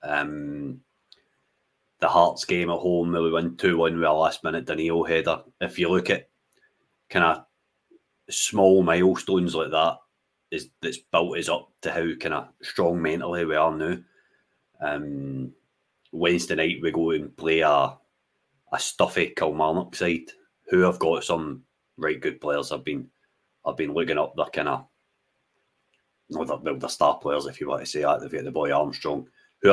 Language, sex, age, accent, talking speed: English, male, 30-49, British, 175 wpm